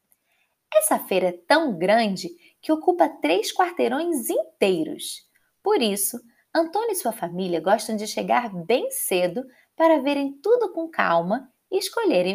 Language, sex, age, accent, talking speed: Portuguese, female, 20-39, Brazilian, 135 wpm